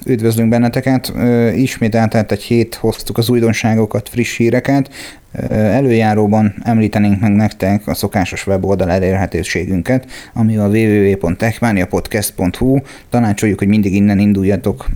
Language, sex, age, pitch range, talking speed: Hungarian, male, 30-49, 105-115 Hz, 110 wpm